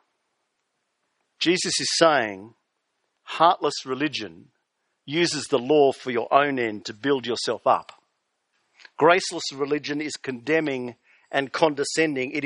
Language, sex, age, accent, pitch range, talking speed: English, male, 50-69, Australian, 130-155 Hz, 110 wpm